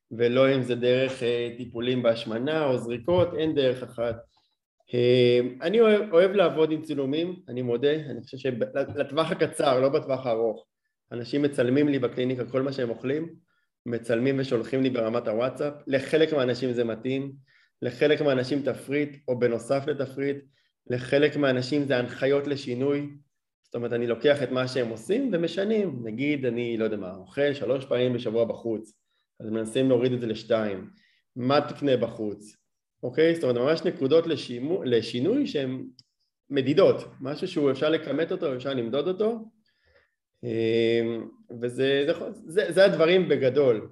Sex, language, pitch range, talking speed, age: male, Hebrew, 120-150 Hz, 140 wpm, 20-39